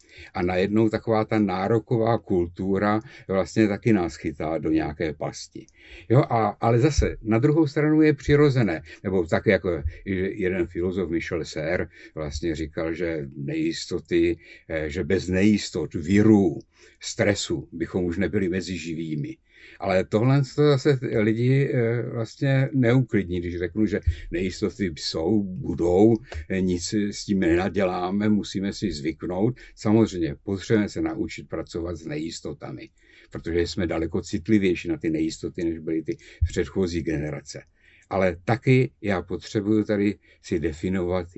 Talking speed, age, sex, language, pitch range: 125 wpm, 60-79, male, Czech, 90-110 Hz